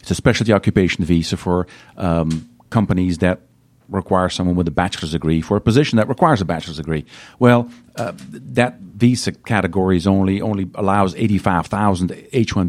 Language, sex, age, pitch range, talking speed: English, male, 50-69, 95-130 Hz, 160 wpm